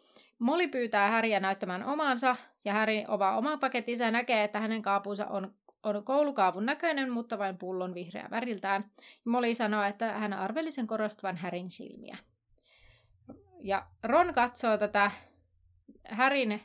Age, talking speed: 30-49, 135 wpm